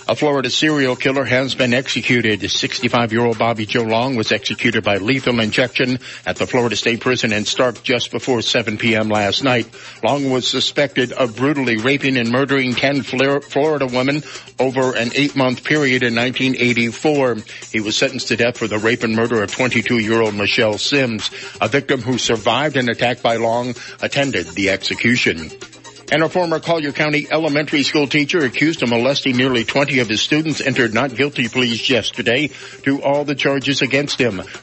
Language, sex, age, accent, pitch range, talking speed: English, male, 60-79, American, 115-140 Hz, 170 wpm